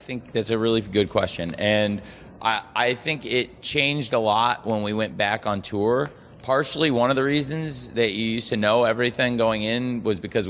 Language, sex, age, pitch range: English, male, 20-39, 95-115 Hz